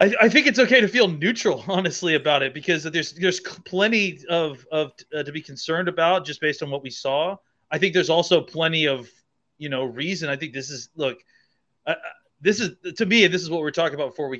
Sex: male